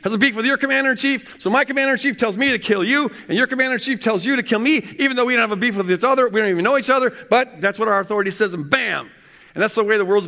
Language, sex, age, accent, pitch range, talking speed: English, male, 50-69, American, 190-240 Hz, 305 wpm